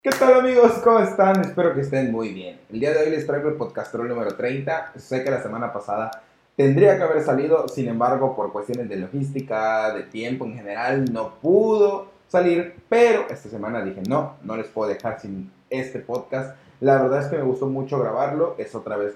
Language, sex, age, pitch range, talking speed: Spanish, male, 30-49, 105-135 Hz, 205 wpm